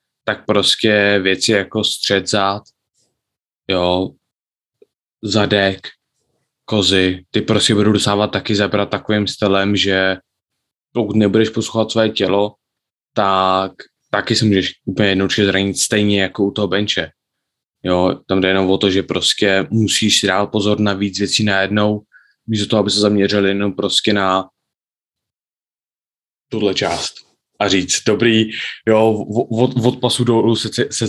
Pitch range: 95-110 Hz